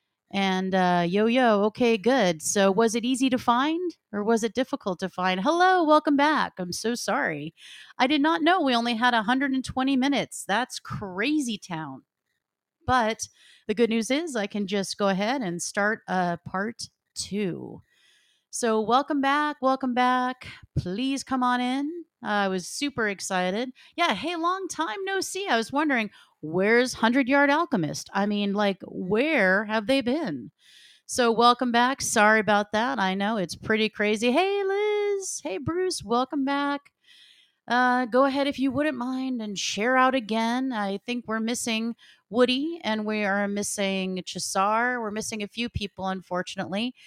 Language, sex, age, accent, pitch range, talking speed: English, female, 30-49, American, 200-265 Hz, 165 wpm